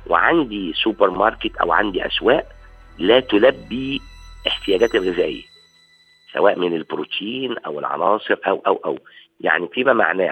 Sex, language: male, Arabic